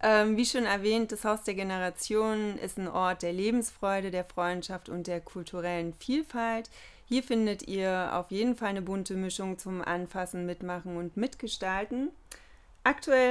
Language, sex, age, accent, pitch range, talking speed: German, female, 30-49, German, 180-215 Hz, 150 wpm